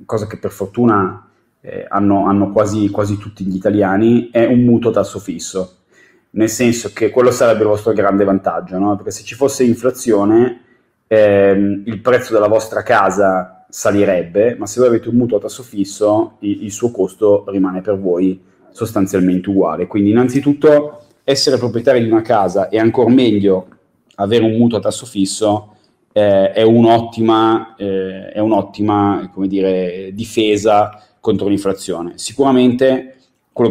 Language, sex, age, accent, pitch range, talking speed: Italian, male, 30-49, native, 100-115 Hz, 155 wpm